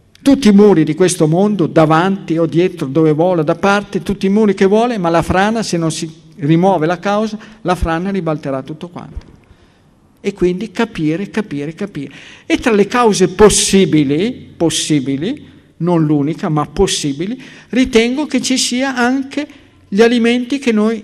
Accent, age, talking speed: native, 50-69, 160 wpm